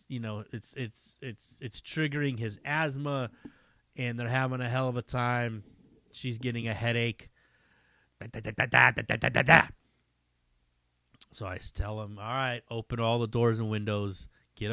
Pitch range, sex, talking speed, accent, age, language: 100-145 Hz, male, 170 wpm, American, 30-49, English